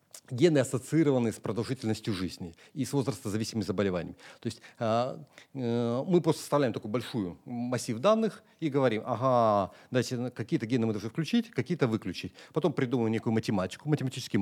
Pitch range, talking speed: 115-155 Hz, 150 wpm